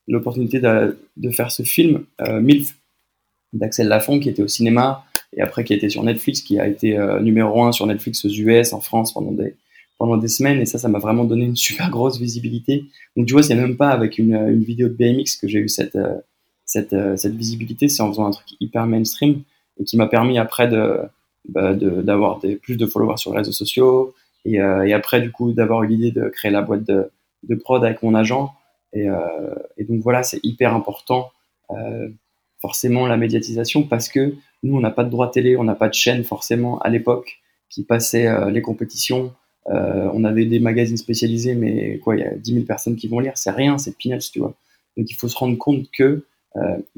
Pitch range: 110-125 Hz